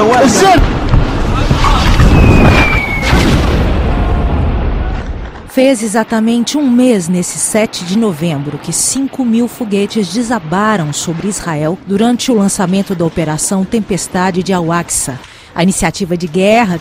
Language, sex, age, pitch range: Portuguese, female, 50-69, 175-220 Hz